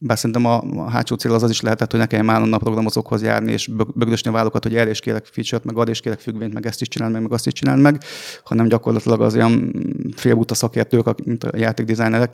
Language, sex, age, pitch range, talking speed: Hungarian, male, 30-49, 110-130 Hz, 250 wpm